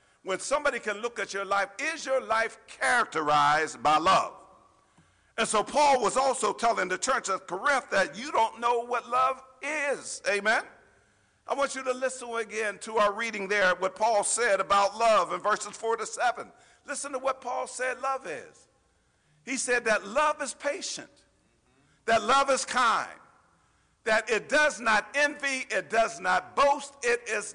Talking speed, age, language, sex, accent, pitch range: 170 wpm, 50-69, English, male, American, 210-270 Hz